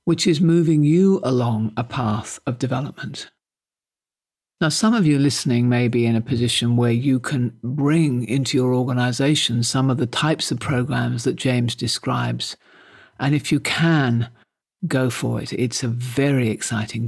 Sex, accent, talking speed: male, British, 160 wpm